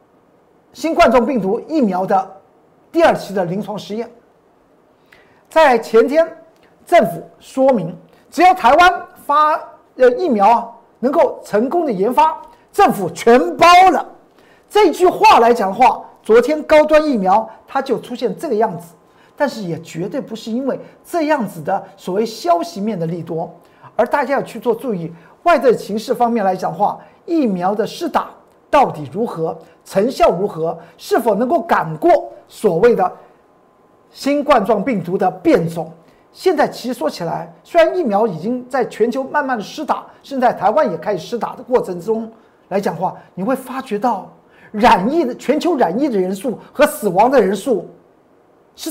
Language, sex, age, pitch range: Chinese, male, 50-69, 195-315 Hz